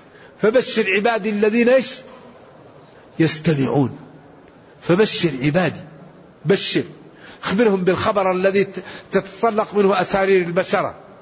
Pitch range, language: 170-220 Hz, Arabic